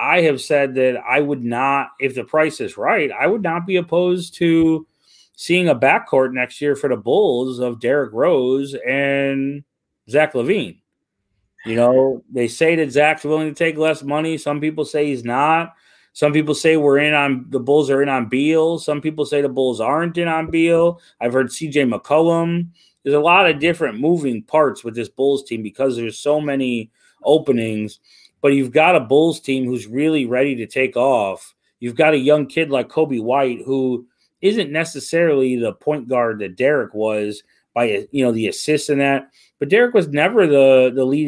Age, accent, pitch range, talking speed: 30-49, American, 125-160 Hz, 190 wpm